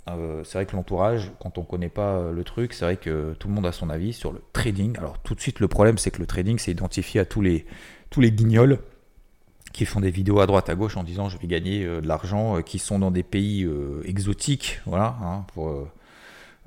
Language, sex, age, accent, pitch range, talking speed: French, male, 30-49, French, 90-110 Hz, 250 wpm